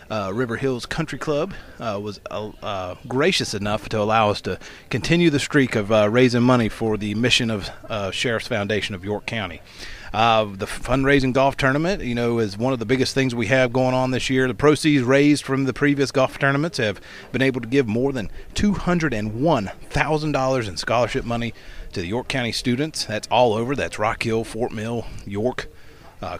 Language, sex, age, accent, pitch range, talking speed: English, male, 30-49, American, 105-135 Hz, 205 wpm